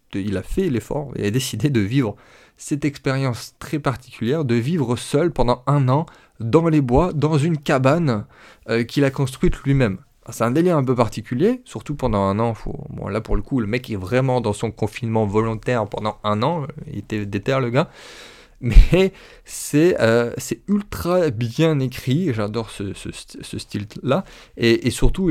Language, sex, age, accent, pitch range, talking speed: French, male, 20-39, French, 105-135 Hz, 185 wpm